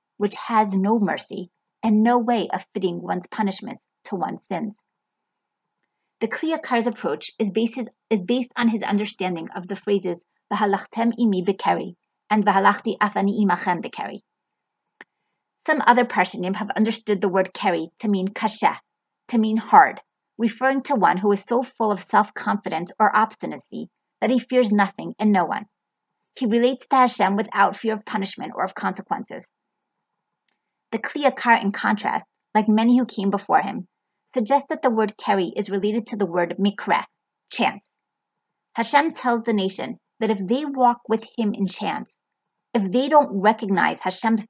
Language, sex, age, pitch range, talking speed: English, female, 30-49, 200-245 Hz, 160 wpm